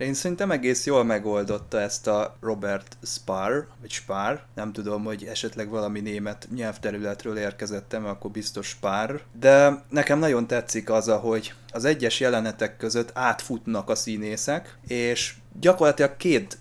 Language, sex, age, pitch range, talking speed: Hungarian, male, 20-39, 105-120 Hz, 135 wpm